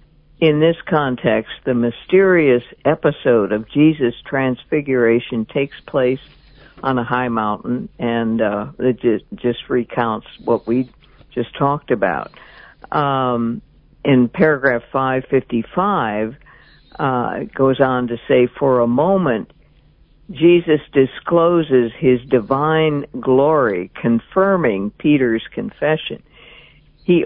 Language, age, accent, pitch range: English, 60-79, American, 120-150 Hz